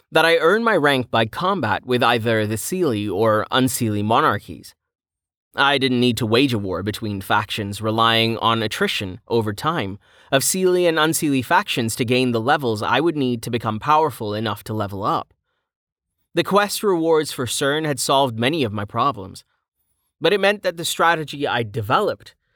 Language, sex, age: English, male, 30-49